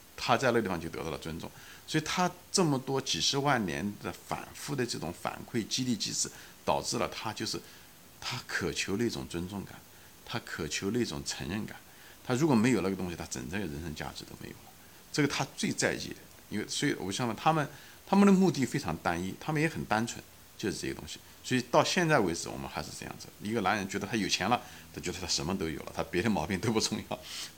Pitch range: 80-125 Hz